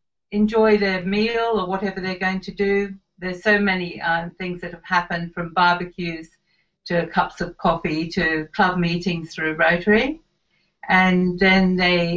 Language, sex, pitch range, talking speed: English, female, 170-195 Hz, 155 wpm